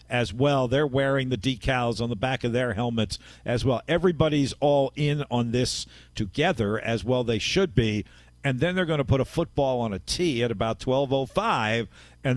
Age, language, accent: 50-69, English, American